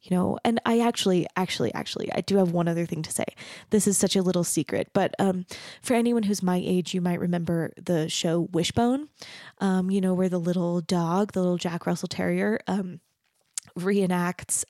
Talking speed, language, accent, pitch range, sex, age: 195 wpm, English, American, 180-215 Hz, female, 20-39